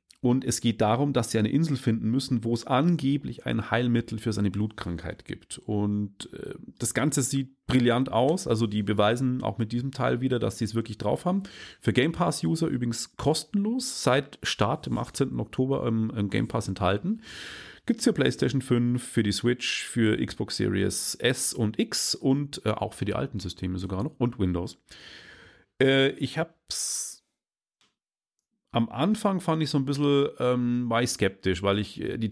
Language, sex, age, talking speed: German, male, 40-59, 180 wpm